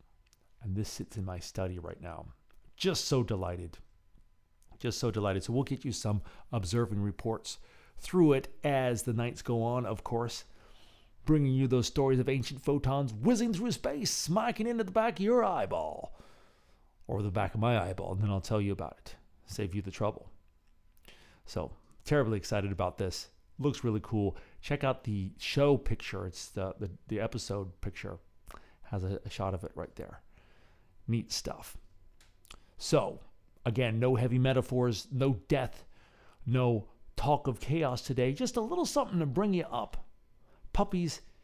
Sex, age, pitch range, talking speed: male, 40-59, 95-135 Hz, 165 wpm